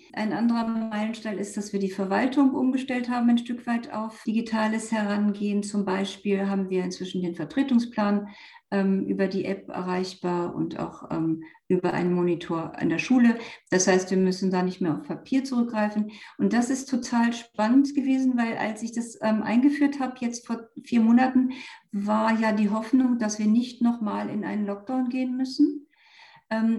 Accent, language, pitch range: German, German, 195-245 Hz